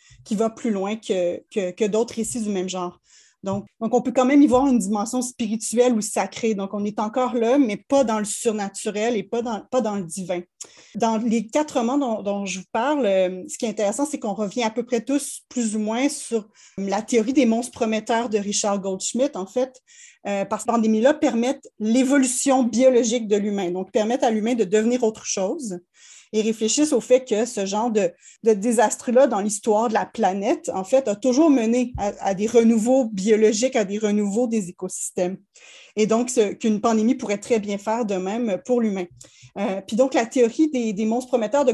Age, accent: 30-49, Canadian